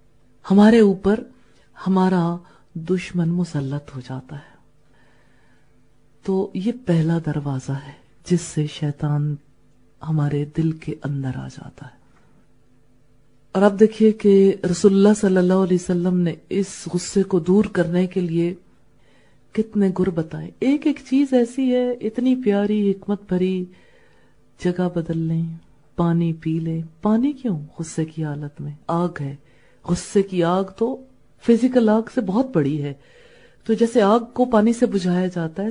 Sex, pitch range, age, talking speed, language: female, 155-205 Hz, 40-59, 140 wpm, English